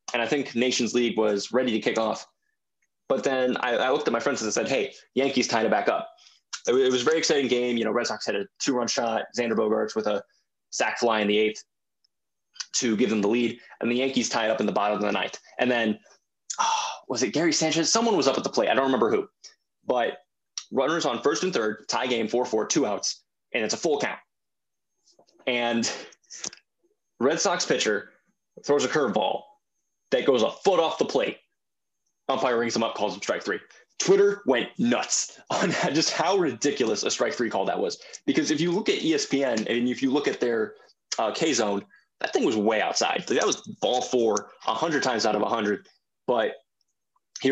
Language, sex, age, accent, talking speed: English, male, 20-39, American, 215 wpm